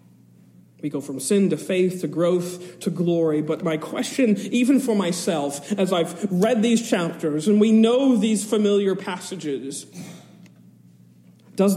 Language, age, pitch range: English, 40-59, 155-235 Hz